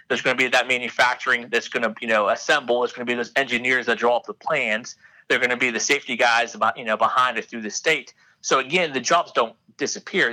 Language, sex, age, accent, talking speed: English, male, 30-49, American, 230 wpm